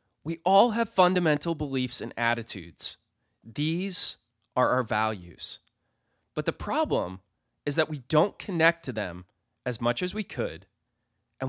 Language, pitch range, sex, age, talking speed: English, 110-140 Hz, male, 20-39, 140 wpm